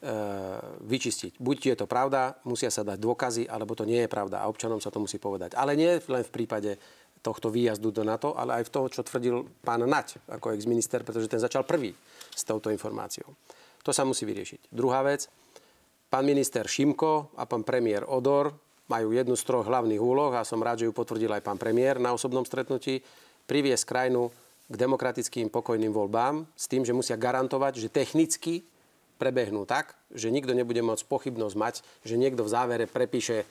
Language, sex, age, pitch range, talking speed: Slovak, male, 40-59, 115-130 Hz, 185 wpm